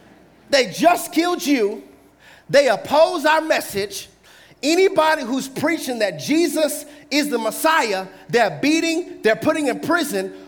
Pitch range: 240-310 Hz